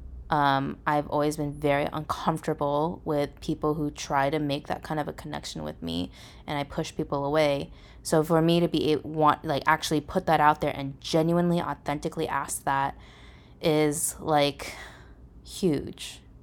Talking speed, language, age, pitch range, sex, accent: 165 wpm, English, 20-39, 145-170 Hz, female, American